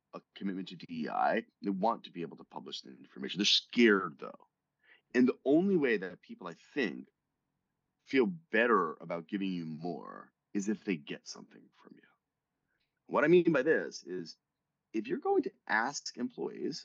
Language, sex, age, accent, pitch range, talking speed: English, male, 30-49, American, 95-130 Hz, 175 wpm